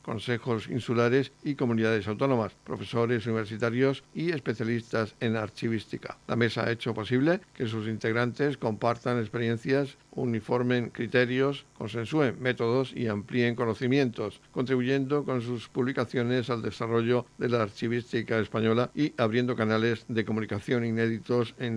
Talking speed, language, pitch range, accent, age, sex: 125 wpm, Spanish, 115-125 Hz, Spanish, 60-79, male